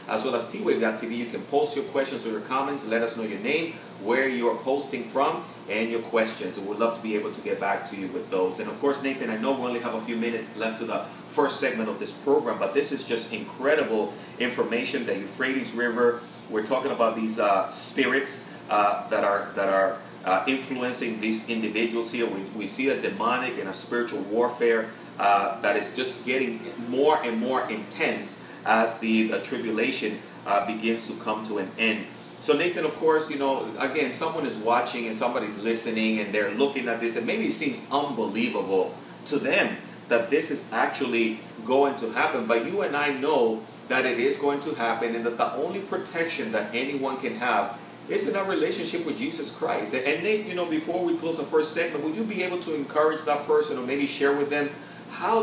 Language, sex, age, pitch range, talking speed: English, male, 30-49, 115-145 Hz, 210 wpm